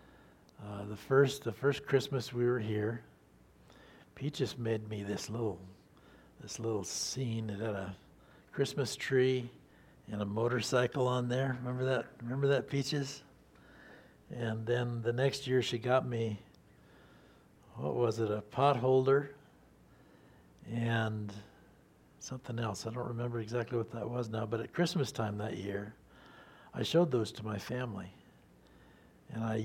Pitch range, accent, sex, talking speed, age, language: 105-125 Hz, American, male, 140 wpm, 60-79, English